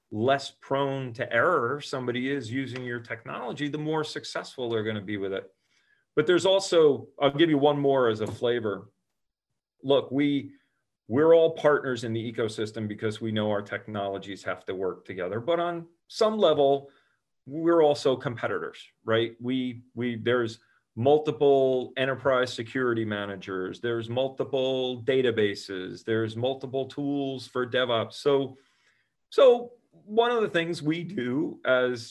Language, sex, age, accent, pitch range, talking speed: English, male, 40-59, American, 110-140 Hz, 145 wpm